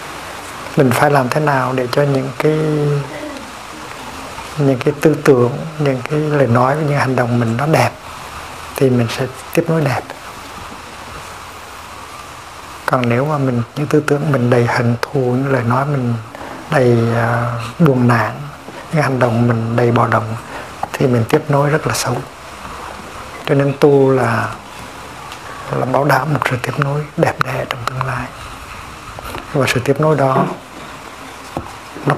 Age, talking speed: 60-79, 160 wpm